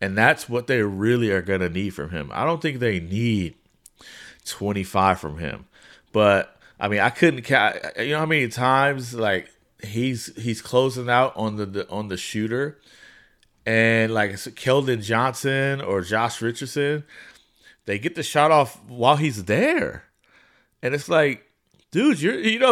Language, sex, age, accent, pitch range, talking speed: English, male, 30-49, American, 115-160 Hz, 165 wpm